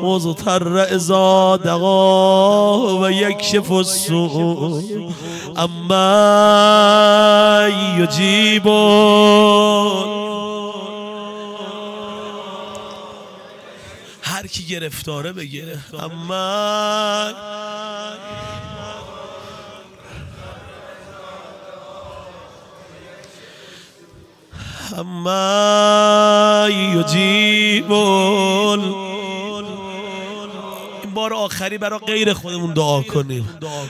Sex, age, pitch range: male, 40-59, 190-210 Hz